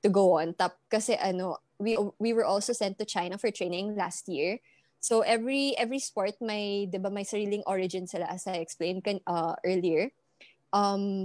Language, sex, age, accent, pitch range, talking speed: English, female, 20-39, Filipino, 190-225 Hz, 170 wpm